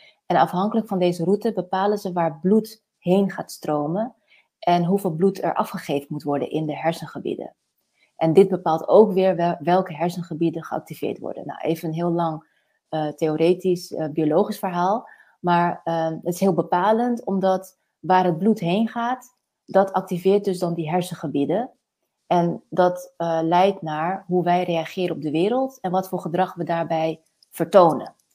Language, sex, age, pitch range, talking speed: Dutch, female, 30-49, 165-195 Hz, 165 wpm